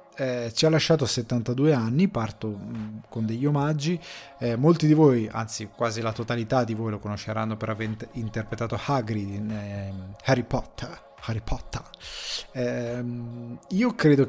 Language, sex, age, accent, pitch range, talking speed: Italian, male, 20-39, native, 115-140 Hz, 145 wpm